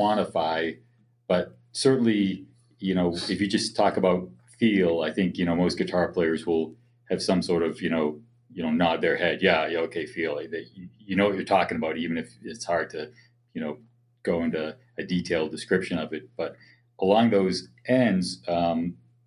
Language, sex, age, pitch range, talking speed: English, male, 40-59, 85-120 Hz, 190 wpm